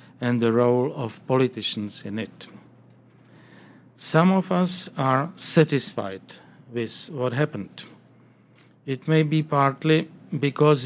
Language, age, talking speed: English, 50-69, 110 wpm